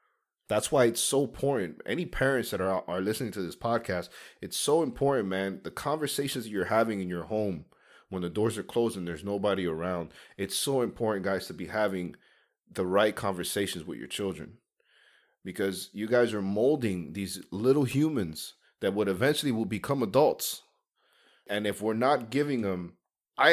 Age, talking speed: 30-49, 180 wpm